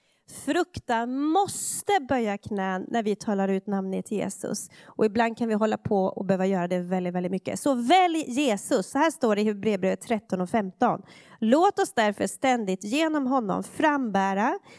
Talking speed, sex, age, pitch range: 170 wpm, female, 30-49, 215-320 Hz